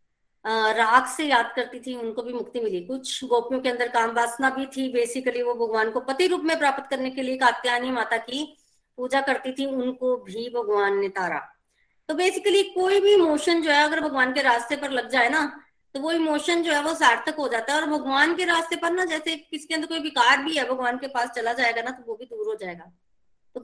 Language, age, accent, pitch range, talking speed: Hindi, 20-39, native, 240-315 Hz, 230 wpm